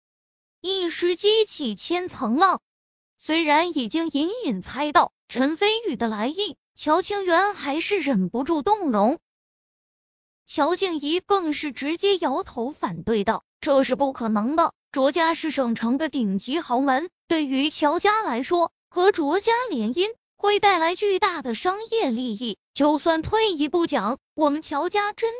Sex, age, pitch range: female, 20-39, 255-360 Hz